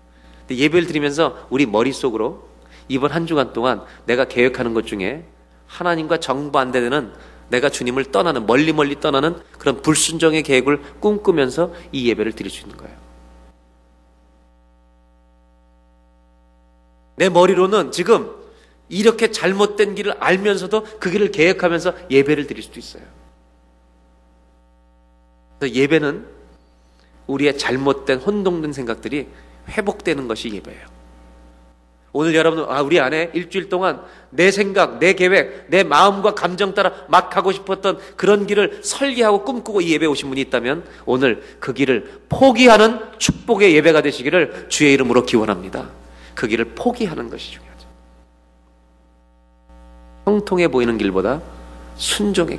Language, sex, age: Korean, male, 40-59